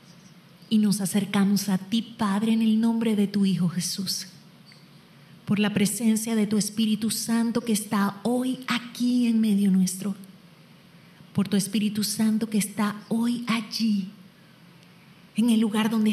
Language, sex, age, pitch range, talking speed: Spanish, female, 30-49, 180-220 Hz, 145 wpm